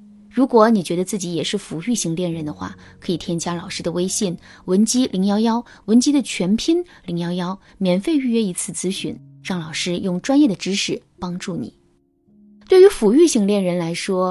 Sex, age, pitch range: female, 20-39, 175-240 Hz